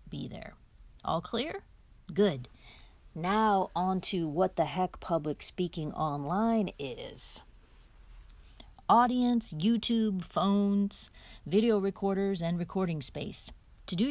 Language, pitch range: English, 165-210 Hz